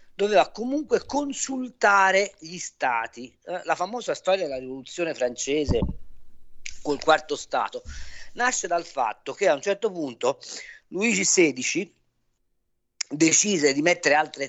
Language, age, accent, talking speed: Italian, 40-59, native, 115 wpm